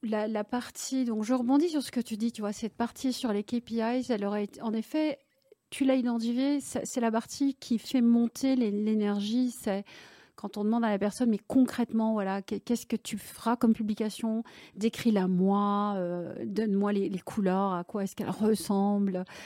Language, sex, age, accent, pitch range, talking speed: French, female, 40-59, French, 210-255 Hz, 190 wpm